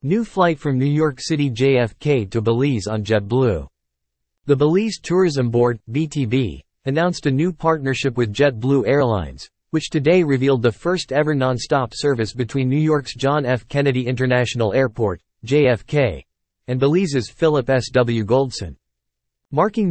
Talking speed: 135 wpm